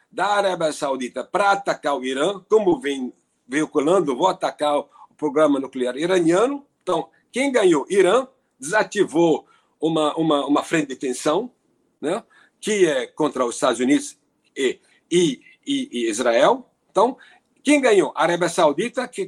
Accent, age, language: Brazilian, 60-79, Portuguese